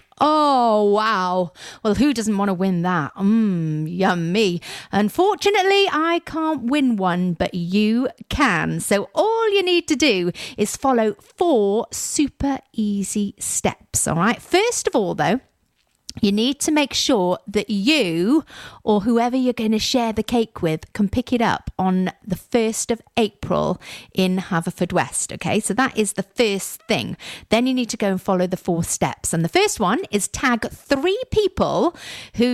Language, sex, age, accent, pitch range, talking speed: English, female, 40-59, British, 190-260 Hz, 165 wpm